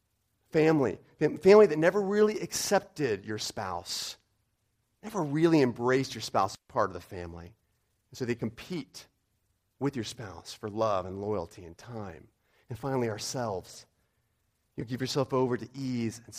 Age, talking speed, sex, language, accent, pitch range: 30-49, 145 wpm, male, English, American, 100-130 Hz